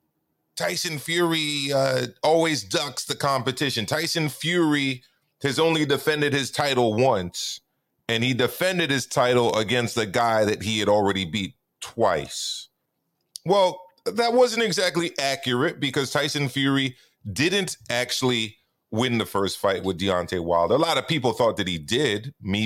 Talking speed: 145 wpm